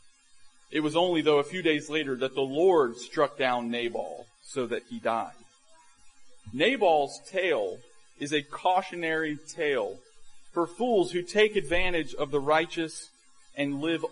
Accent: American